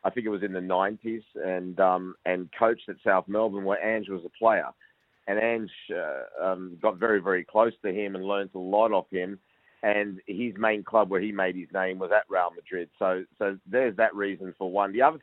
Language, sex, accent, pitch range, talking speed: English, male, Australian, 95-110 Hz, 225 wpm